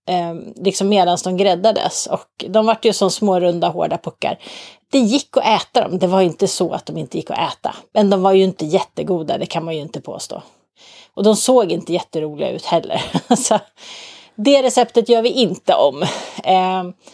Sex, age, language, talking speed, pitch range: female, 30-49, Swedish, 200 wpm, 180-220 Hz